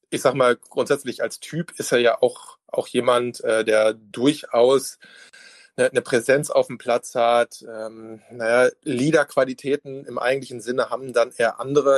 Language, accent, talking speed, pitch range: German, German, 160 wpm, 115-140 Hz